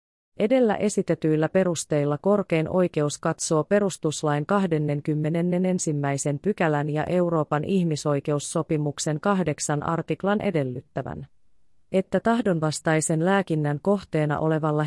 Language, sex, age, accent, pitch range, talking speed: Finnish, female, 30-49, native, 145-180 Hz, 80 wpm